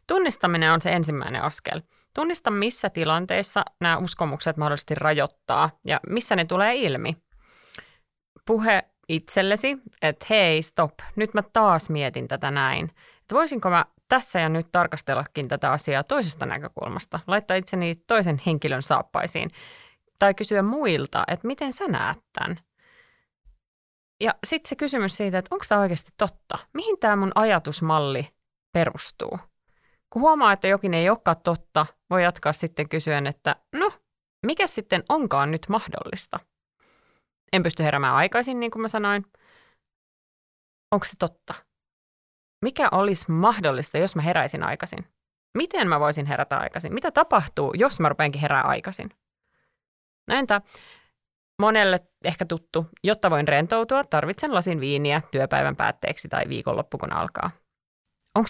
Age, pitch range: 30-49, 160-220 Hz